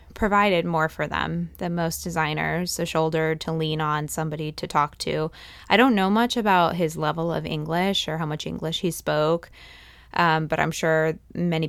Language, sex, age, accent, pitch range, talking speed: English, female, 20-39, American, 155-175 Hz, 185 wpm